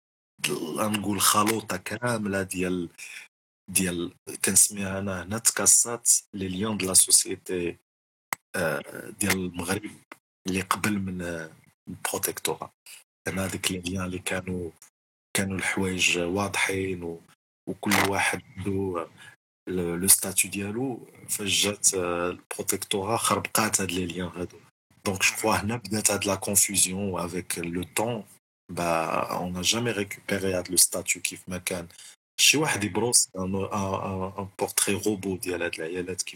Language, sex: Arabic, male